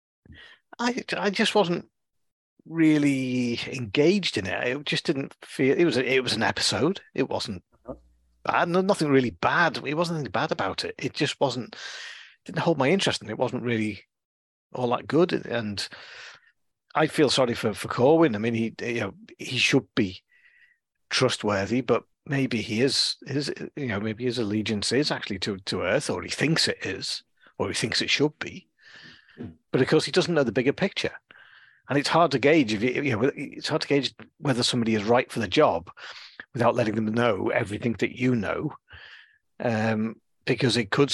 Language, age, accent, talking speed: English, 40-59, British, 190 wpm